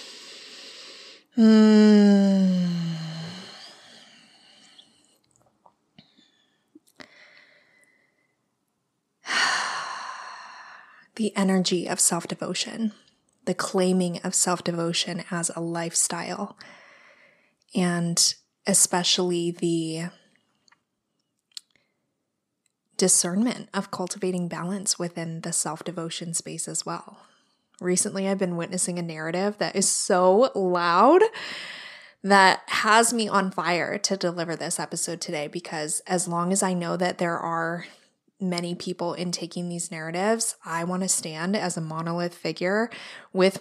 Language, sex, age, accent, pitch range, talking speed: English, female, 20-39, American, 175-205 Hz, 95 wpm